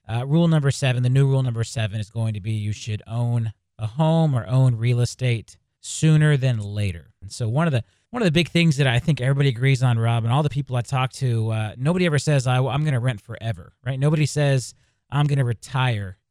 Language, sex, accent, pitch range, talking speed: English, male, American, 115-145 Hz, 245 wpm